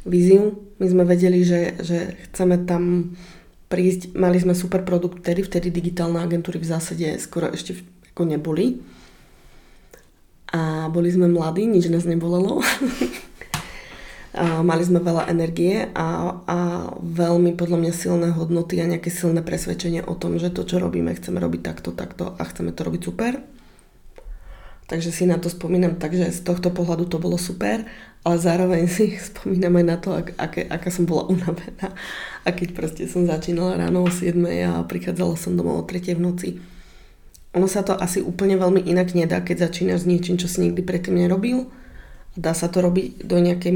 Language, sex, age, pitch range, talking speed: Slovak, female, 20-39, 170-180 Hz, 170 wpm